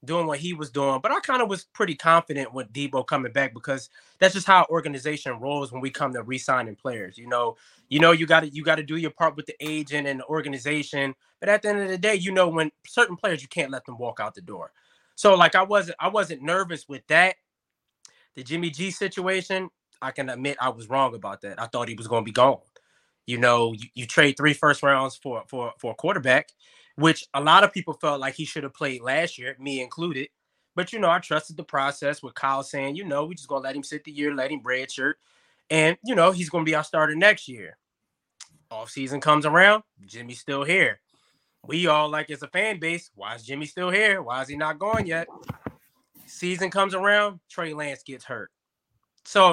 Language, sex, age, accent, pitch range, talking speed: English, male, 20-39, American, 135-175 Hz, 230 wpm